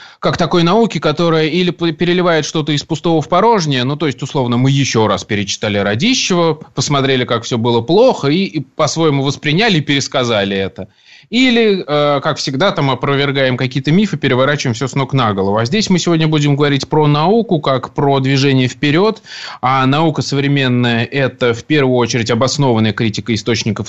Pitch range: 125-155 Hz